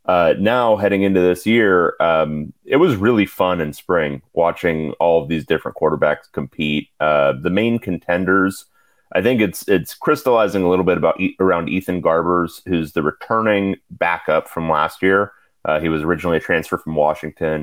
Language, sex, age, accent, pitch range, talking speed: English, male, 30-49, American, 85-105 Hz, 175 wpm